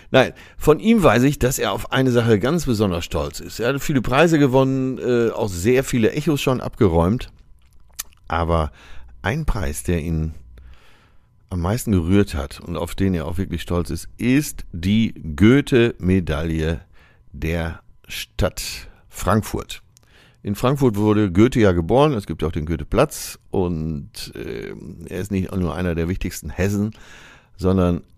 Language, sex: German, male